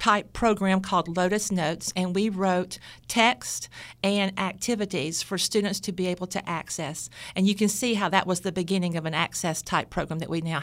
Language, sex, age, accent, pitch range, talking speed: English, female, 50-69, American, 175-205 Hz, 190 wpm